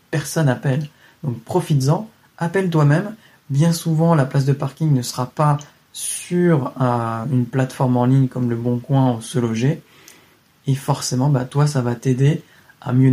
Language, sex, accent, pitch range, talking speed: French, male, French, 125-155 Hz, 165 wpm